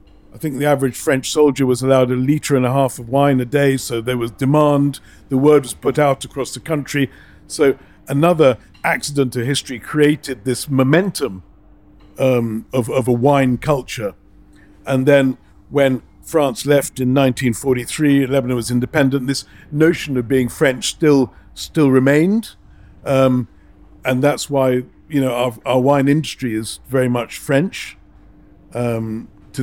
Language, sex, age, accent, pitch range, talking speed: English, male, 50-69, British, 120-145 Hz, 160 wpm